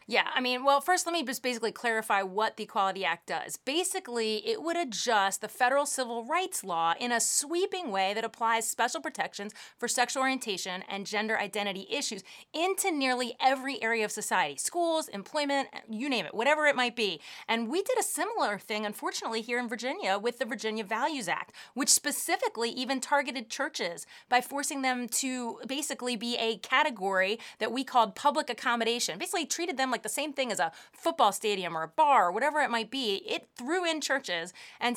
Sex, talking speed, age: female, 190 wpm, 30-49